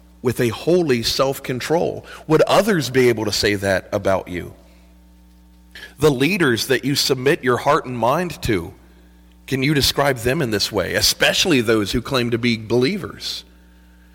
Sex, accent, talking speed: male, American, 155 wpm